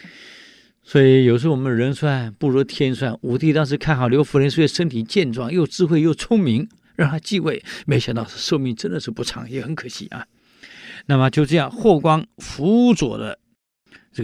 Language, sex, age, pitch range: Chinese, male, 50-69, 130-185 Hz